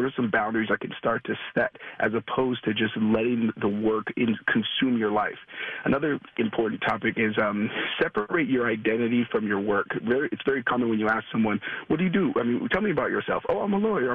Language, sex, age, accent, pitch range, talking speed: English, male, 40-59, American, 110-140 Hz, 210 wpm